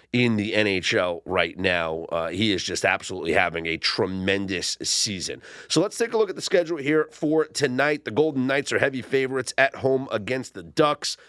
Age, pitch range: 30-49, 120-170 Hz